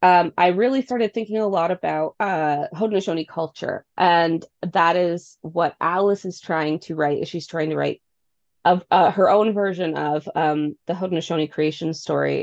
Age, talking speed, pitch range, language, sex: 20-39, 170 wpm, 155-180 Hz, English, female